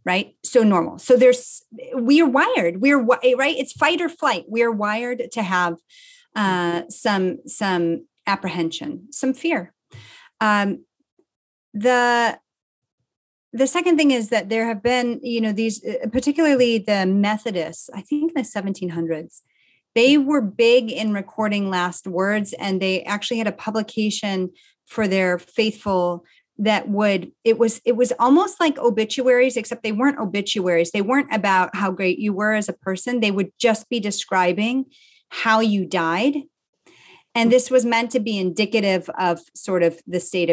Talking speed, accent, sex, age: 155 wpm, American, female, 30-49